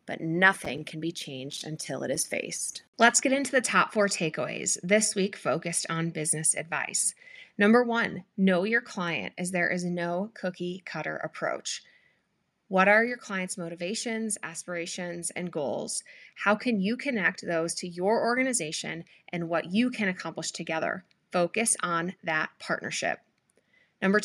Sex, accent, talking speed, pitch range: female, American, 150 wpm, 175-220 Hz